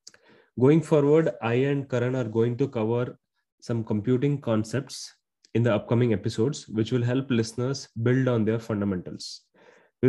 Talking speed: 150 wpm